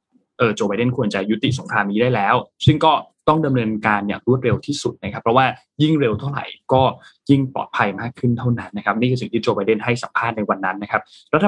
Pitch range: 105-130 Hz